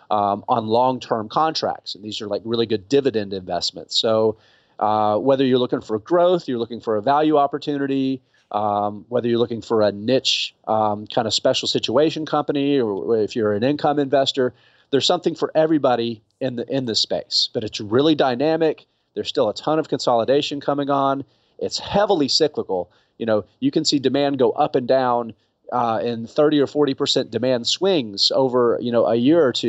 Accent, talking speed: American, 190 wpm